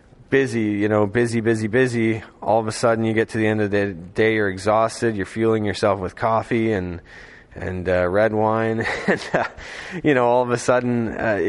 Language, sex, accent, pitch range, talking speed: English, male, American, 105-125 Hz, 205 wpm